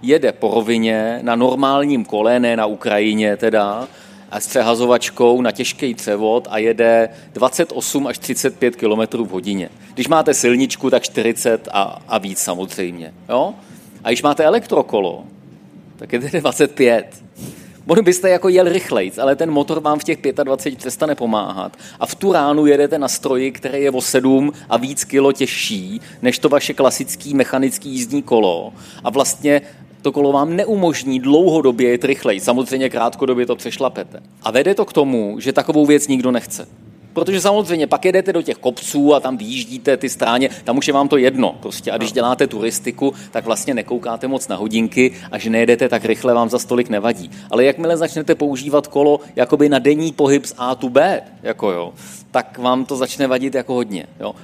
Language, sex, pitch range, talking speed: Czech, male, 120-150 Hz, 175 wpm